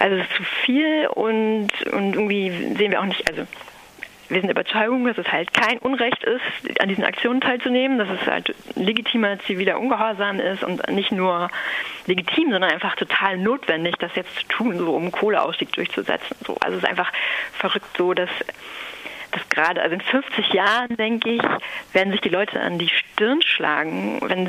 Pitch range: 180-225 Hz